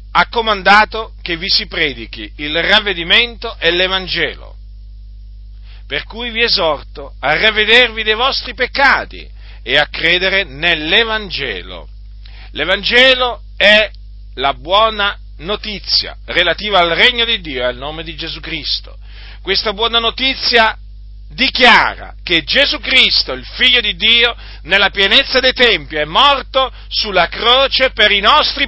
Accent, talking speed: native, 130 wpm